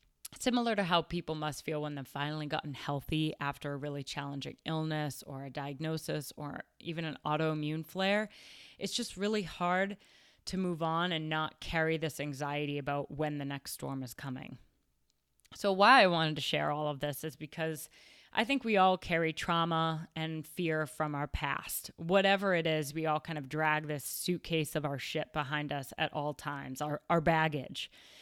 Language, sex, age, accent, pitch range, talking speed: English, female, 20-39, American, 150-175 Hz, 185 wpm